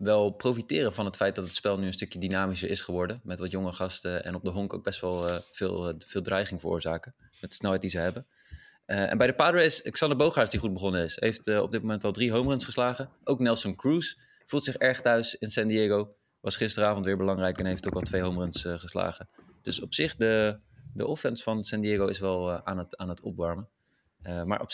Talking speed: 245 wpm